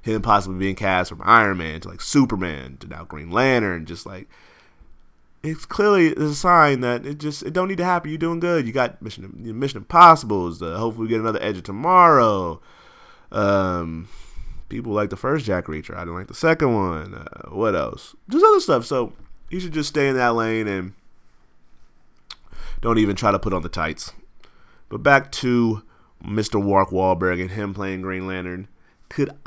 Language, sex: English, male